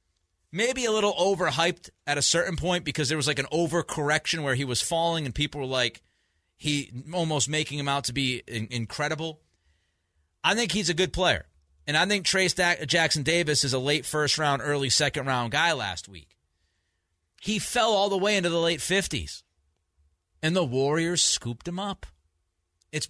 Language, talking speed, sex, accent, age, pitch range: English, 180 wpm, male, American, 30-49, 120-180 Hz